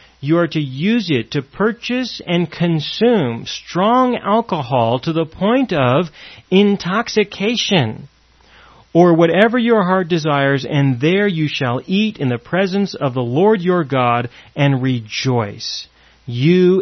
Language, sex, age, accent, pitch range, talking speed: English, male, 40-59, American, 135-210 Hz, 130 wpm